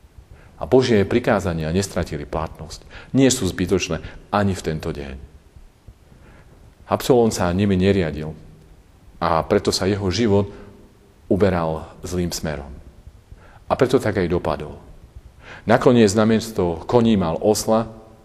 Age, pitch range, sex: 40-59, 80-100 Hz, male